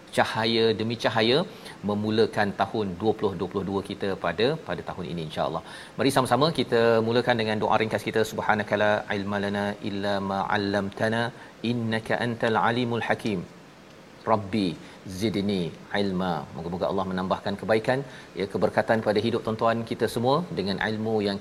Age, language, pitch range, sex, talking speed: 40-59, Malayalam, 100-120 Hz, male, 130 wpm